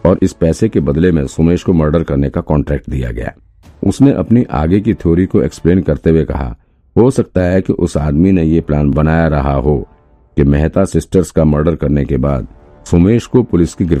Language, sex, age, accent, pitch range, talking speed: Hindi, male, 50-69, native, 70-90 Hz, 120 wpm